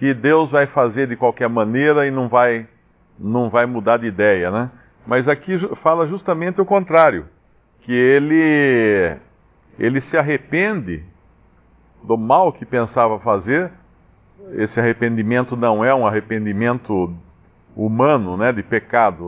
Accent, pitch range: Brazilian, 110-150 Hz